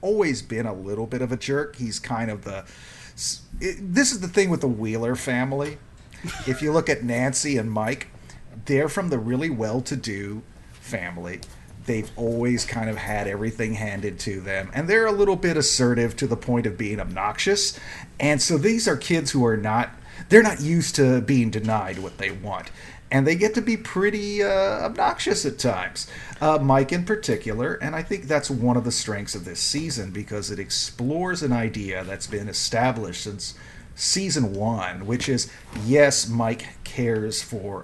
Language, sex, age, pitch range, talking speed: English, male, 40-59, 110-150 Hz, 180 wpm